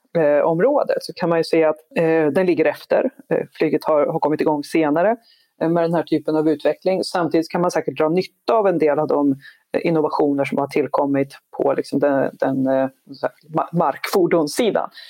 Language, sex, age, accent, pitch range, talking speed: Swedish, female, 30-49, native, 150-195 Hz, 160 wpm